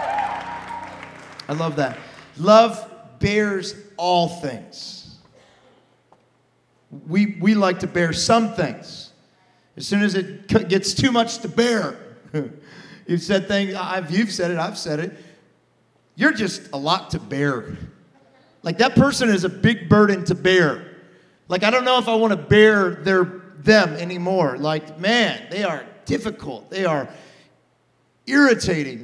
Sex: male